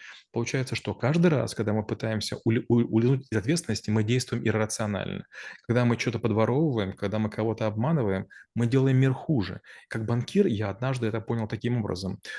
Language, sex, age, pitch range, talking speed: Russian, male, 30-49, 105-125 Hz, 165 wpm